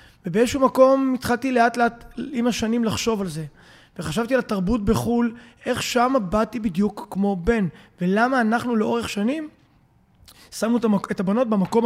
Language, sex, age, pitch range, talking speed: Hebrew, male, 20-39, 195-245 Hz, 140 wpm